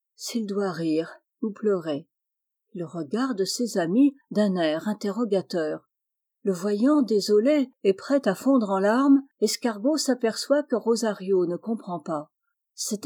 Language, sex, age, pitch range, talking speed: French, female, 50-69, 190-255 Hz, 135 wpm